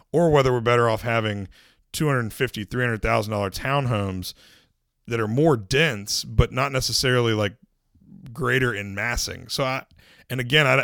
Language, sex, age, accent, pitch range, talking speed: English, male, 30-49, American, 105-130 Hz, 170 wpm